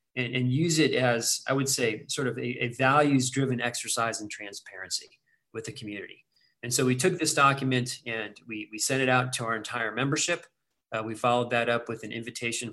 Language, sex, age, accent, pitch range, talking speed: English, male, 30-49, American, 115-135 Hz, 205 wpm